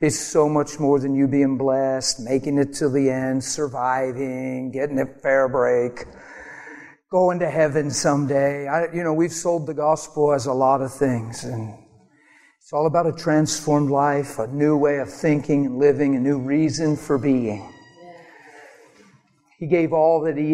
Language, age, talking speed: English, 50-69, 165 wpm